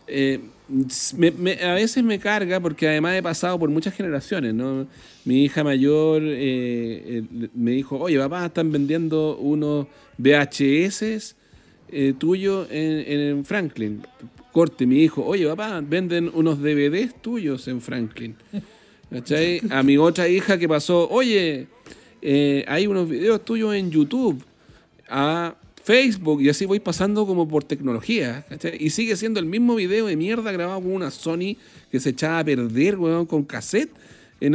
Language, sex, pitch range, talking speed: Spanish, male, 145-200 Hz, 150 wpm